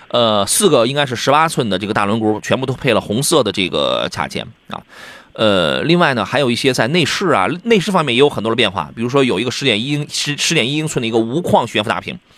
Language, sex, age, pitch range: Chinese, male, 30-49, 120-170 Hz